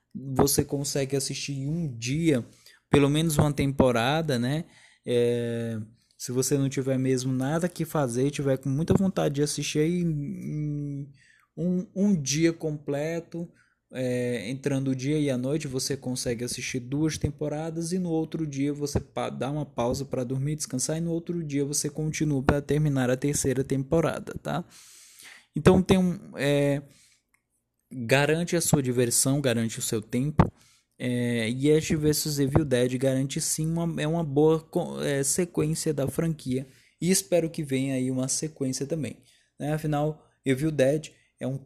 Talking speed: 155 wpm